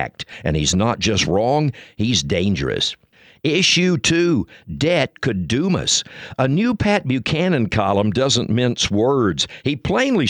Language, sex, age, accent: English, male, 60-79, American